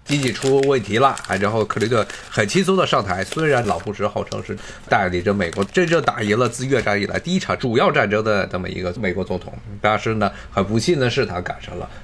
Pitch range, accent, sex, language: 105-155 Hz, native, male, Chinese